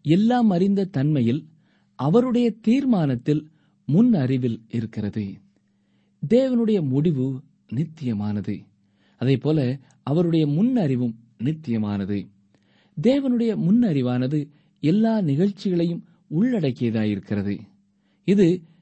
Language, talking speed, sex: Tamil, 75 wpm, male